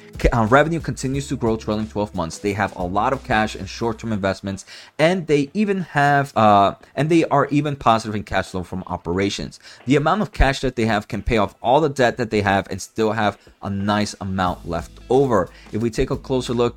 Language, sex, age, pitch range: English, male, 30-49, 100-130 Hz